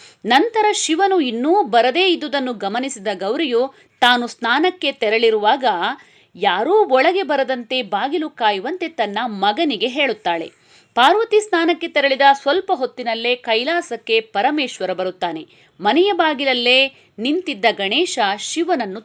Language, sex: Kannada, female